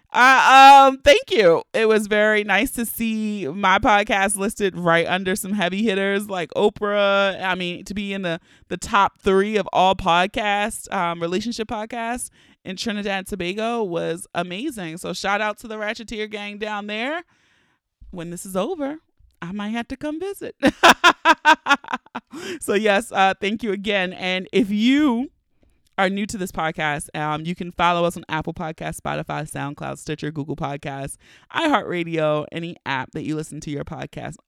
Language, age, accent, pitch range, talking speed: English, 30-49, American, 165-225 Hz, 165 wpm